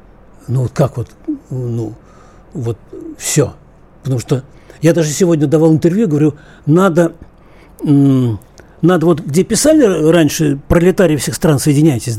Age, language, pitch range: 60-79, Russian, 135-180 Hz